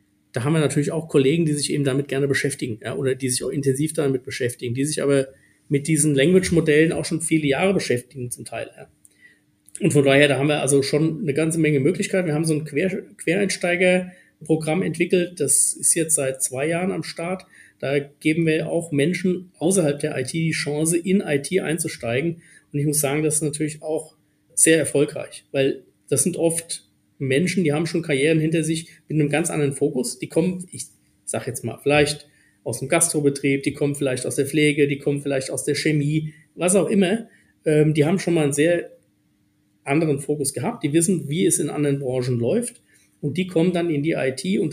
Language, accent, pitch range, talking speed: German, German, 140-165 Hz, 205 wpm